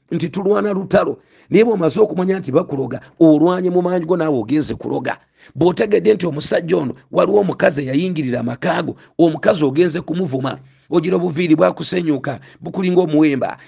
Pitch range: 140-180 Hz